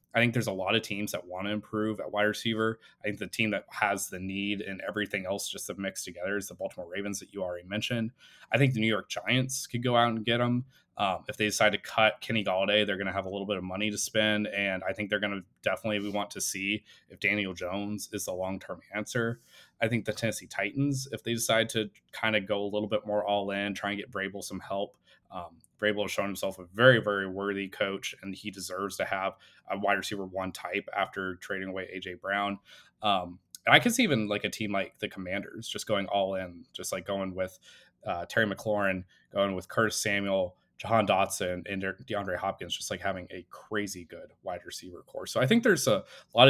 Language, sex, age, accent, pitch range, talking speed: English, male, 20-39, American, 95-110 Hz, 235 wpm